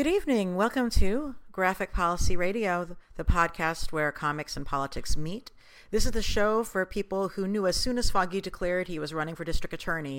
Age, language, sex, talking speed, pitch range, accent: 50-69, English, female, 195 wpm, 150-195 Hz, American